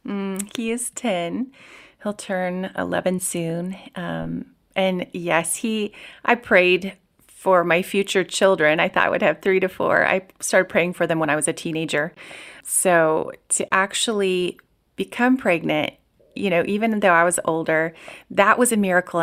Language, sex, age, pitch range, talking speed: English, female, 30-49, 170-200 Hz, 160 wpm